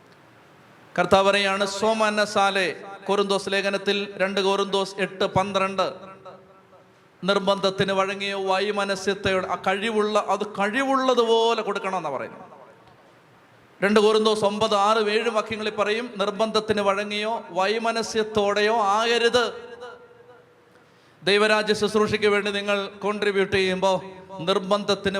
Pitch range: 195-235 Hz